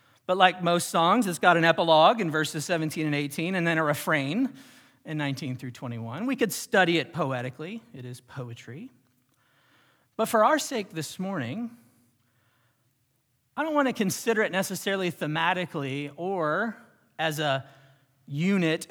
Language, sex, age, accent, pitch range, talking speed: English, male, 40-59, American, 130-195 Hz, 150 wpm